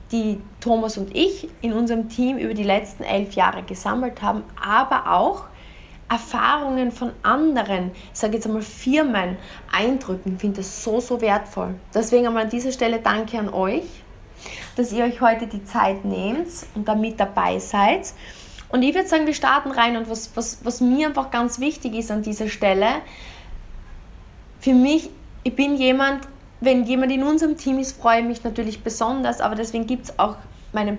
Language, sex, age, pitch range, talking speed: German, female, 20-39, 205-260 Hz, 175 wpm